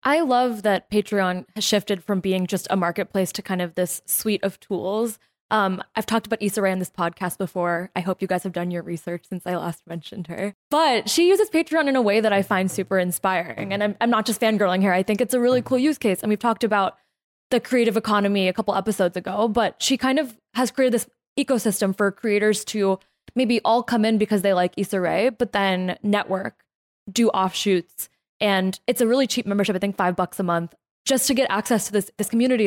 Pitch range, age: 185-225 Hz, 20-39